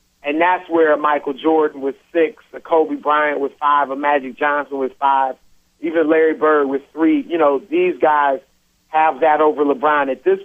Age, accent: 40-59, American